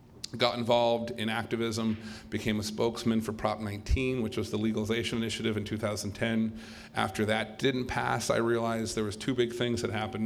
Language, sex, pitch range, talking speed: English, male, 110-125 Hz, 175 wpm